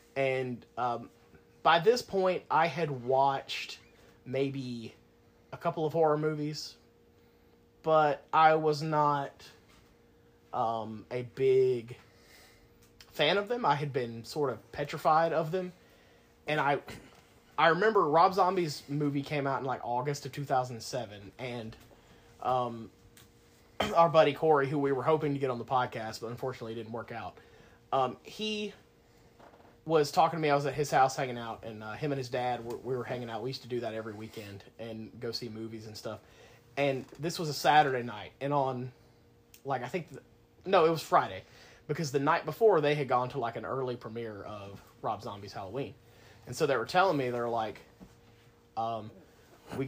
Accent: American